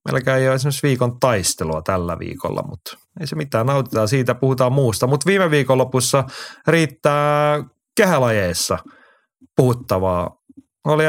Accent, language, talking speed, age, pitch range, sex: native, Finnish, 125 wpm, 30-49, 105-135 Hz, male